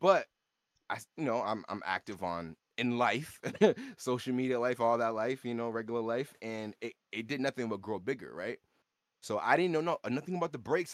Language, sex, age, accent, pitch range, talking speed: English, male, 20-39, American, 110-135 Hz, 210 wpm